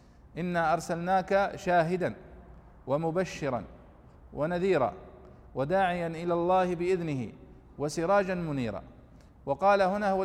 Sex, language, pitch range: male, Arabic, 165-200 Hz